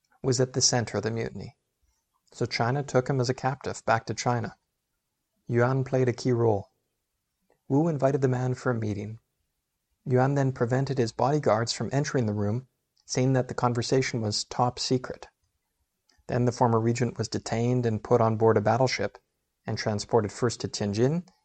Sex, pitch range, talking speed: male, 115-130 Hz, 175 wpm